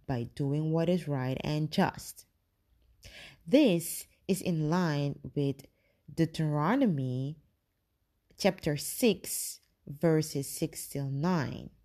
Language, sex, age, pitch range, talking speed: English, female, 30-49, 135-190 Hz, 90 wpm